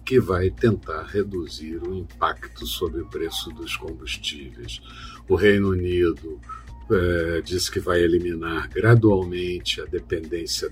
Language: Portuguese